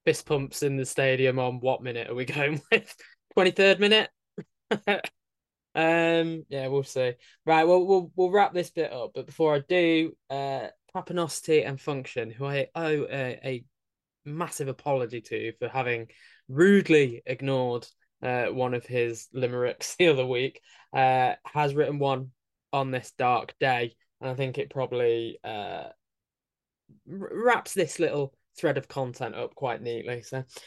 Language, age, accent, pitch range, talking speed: English, 10-29, British, 130-160 Hz, 155 wpm